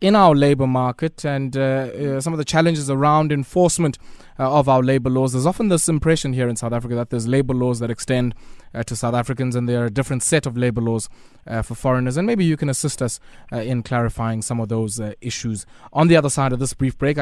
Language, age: English, 20-39